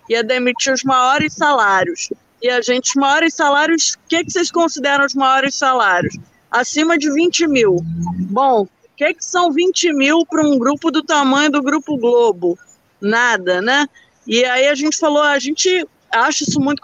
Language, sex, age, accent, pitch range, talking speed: Portuguese, female, 20-39, Brazilian, 260-330 Hz, 170 wpm